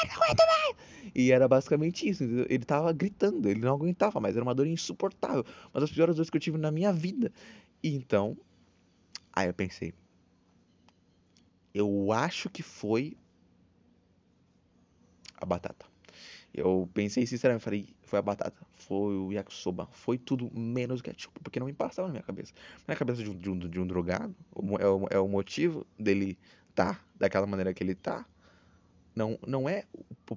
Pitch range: 95-140 Hz